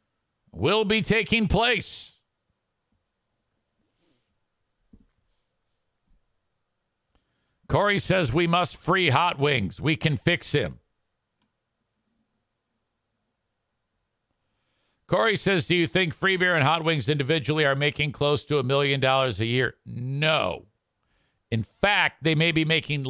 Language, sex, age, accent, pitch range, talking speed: English, male, 50-69, American, 105-150 Hz, 110 wpm